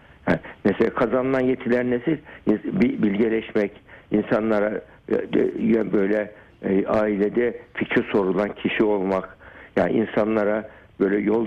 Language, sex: Turkish, male